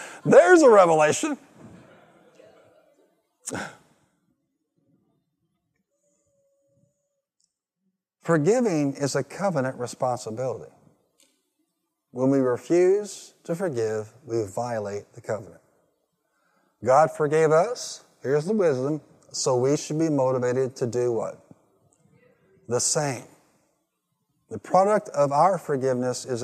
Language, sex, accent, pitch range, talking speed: English, male, American, 145-200 Hz, 90 wpm